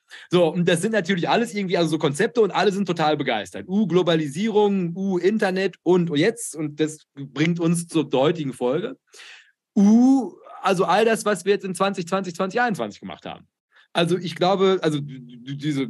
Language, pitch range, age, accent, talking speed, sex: German, 150-185 Hz, 30-49, German, 175 wpm, male